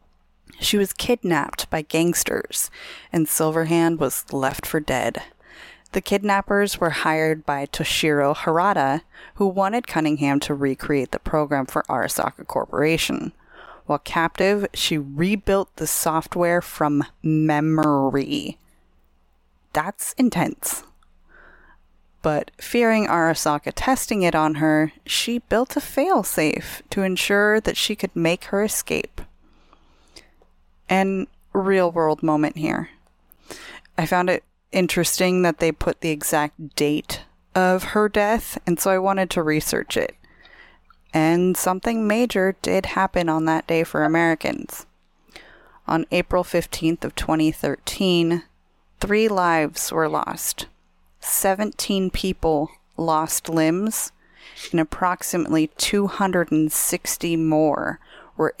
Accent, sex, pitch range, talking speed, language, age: American, female, 155-195 Hz, 115 wpm, English, 20-39